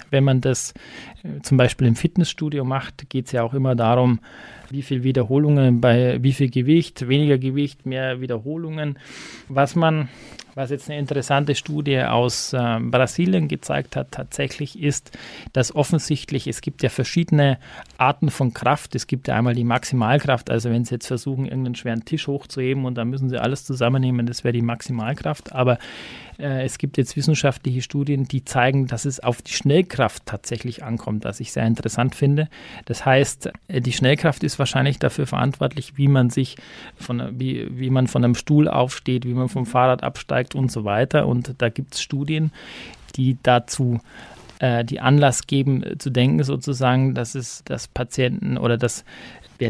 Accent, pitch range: German, 125-140 Hz